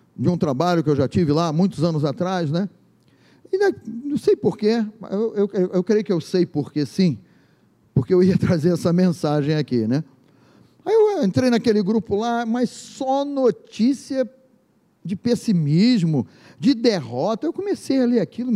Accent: Brazilian